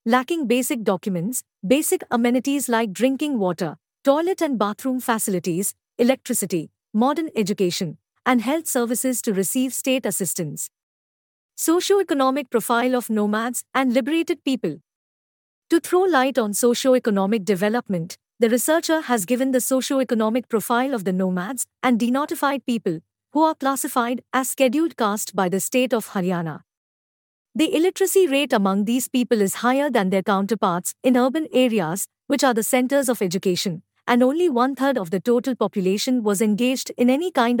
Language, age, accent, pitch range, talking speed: English, 50-69, Indian, 210-270 Hz, 150 wpm